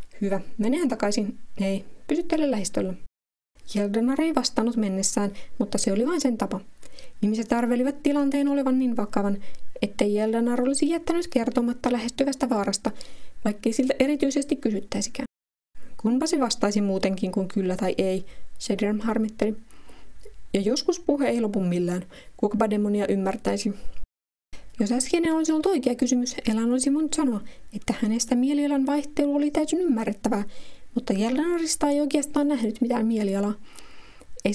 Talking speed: 130 wpm